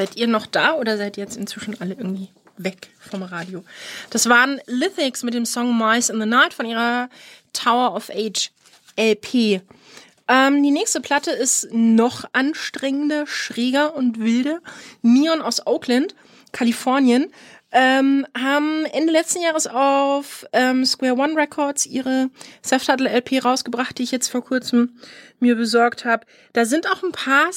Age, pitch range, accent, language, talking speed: 30-49, 230-280 Hz, German, English, 155 wpm